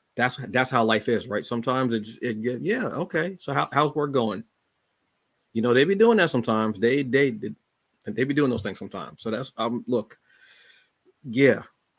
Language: English